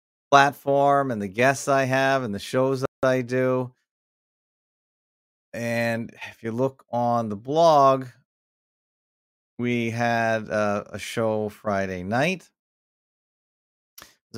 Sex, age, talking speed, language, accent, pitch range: male, 40-59, 110 wpm, English, American, 100-120 Hz